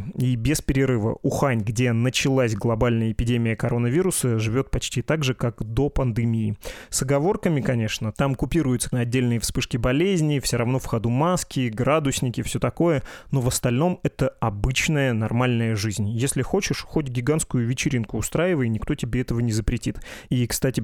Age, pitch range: 20-39, 115-140 Hz